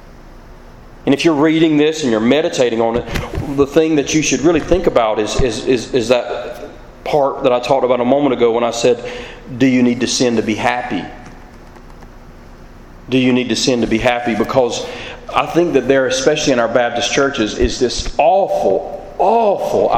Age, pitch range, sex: 40-59, 115-140 Hz, male